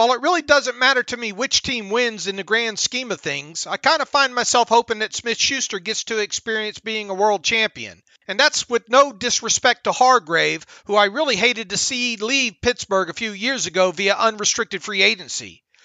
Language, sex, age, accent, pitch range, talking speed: English, male, 40-59, American, 200-255 Hz, 205 wpm